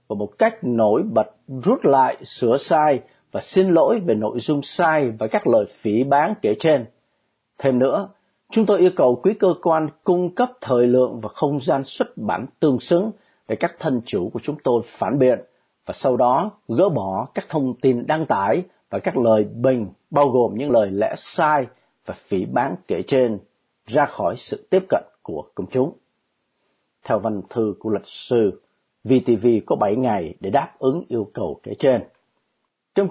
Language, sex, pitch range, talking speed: Vietnamese, male, 120-170 Hz, 185 wpm